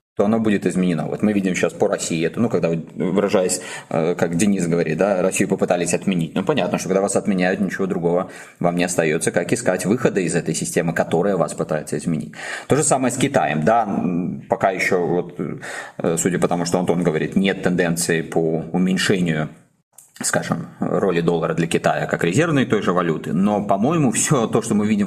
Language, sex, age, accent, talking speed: Russian, male, 20-39, native, 185 wpm